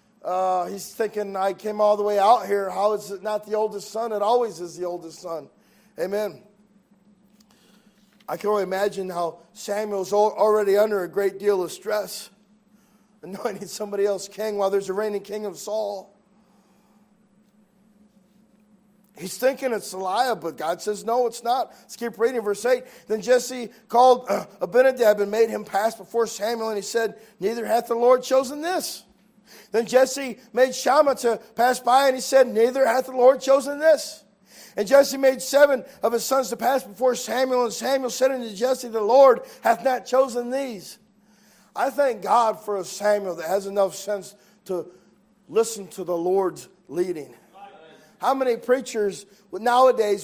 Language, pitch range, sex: English, 200-240 Hz, male